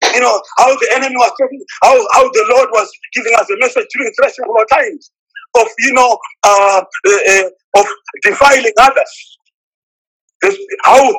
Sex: male